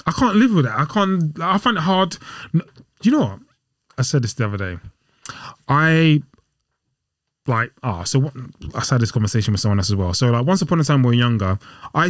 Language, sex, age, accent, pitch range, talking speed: English, male, 20-39, British, 115-140 Hz, 235 wpm